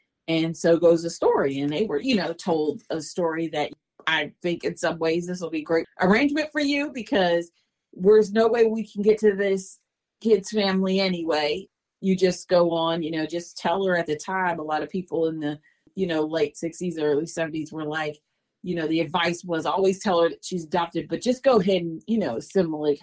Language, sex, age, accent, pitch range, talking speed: English, female, 40-59, American, 155-185 Hz, 220 wpm